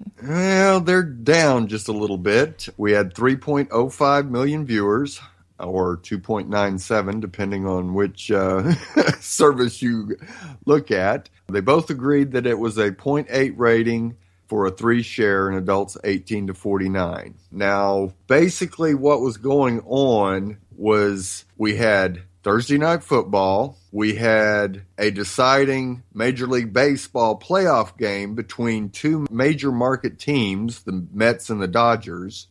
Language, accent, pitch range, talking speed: English, American, 100-135 Hz, 130 wpm